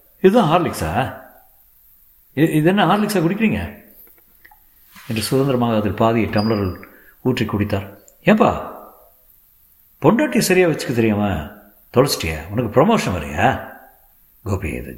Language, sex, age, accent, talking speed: Tamil, male, 60-79, native, 90 wpm